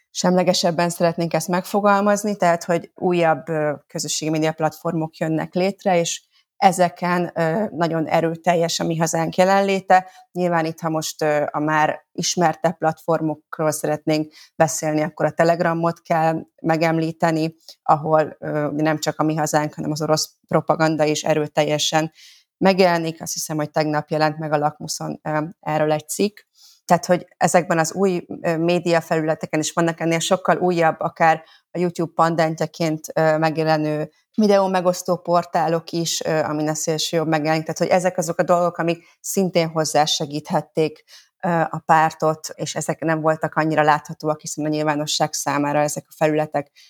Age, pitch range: 30-49, 155-175 Hz